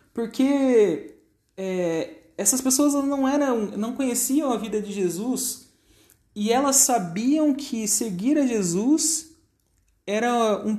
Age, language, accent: 30-49, Portuguese, Brazilian